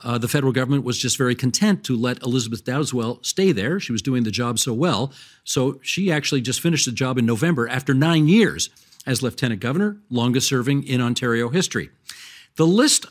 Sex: male